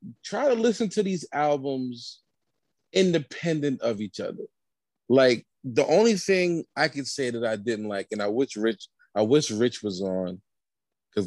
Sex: male